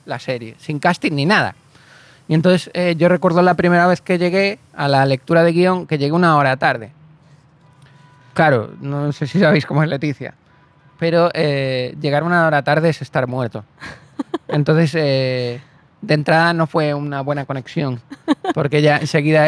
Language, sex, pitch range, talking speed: Spanish, male, 140-175 Hz, 170 wpm